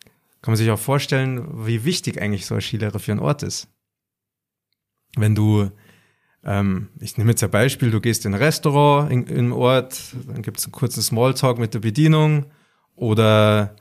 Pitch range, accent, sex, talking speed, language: 110-145 Hz, German, male, 175 wpm, German